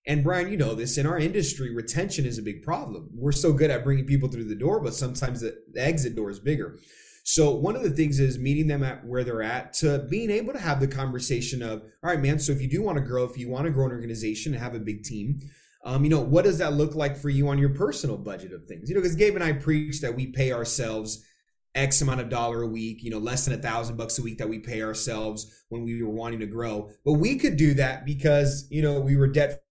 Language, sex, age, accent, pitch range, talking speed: English, male, 20-39, American, 125-160 Hz, 270 wpm